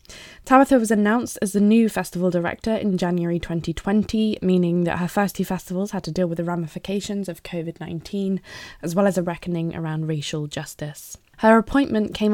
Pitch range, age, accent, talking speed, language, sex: 170-200 Hz, 10-29, British, 175 wpm, English, female